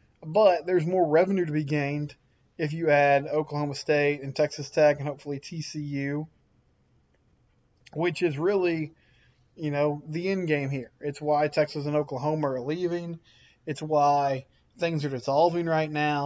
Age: 20-39